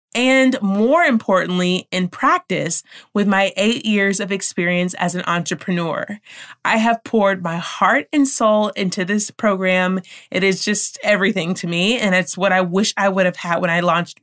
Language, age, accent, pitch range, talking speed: English, 20-39, American, 185-245 Hz, 175 wpm